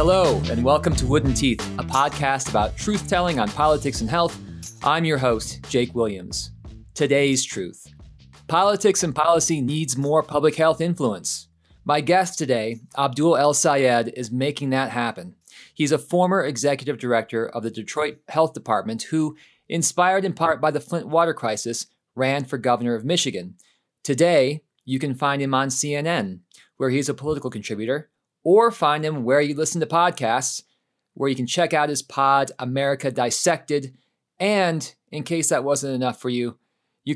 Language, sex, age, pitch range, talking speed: English, male, 40-59, 120-155 Hz, 160 wpm